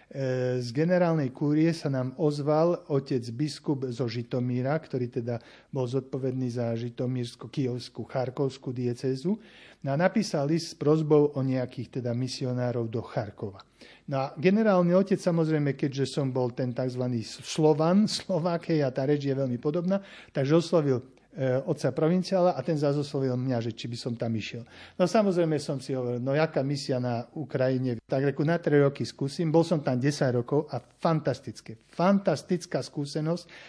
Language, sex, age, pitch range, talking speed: Slovak, male, 50-69, 125-155 Hz, 155 wpm